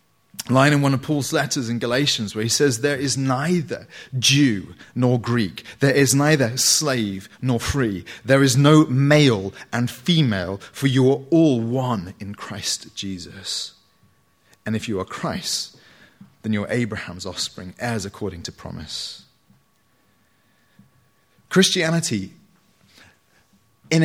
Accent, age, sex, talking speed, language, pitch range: British, 30-49, male, 135 wpm, English, 105-145 Hz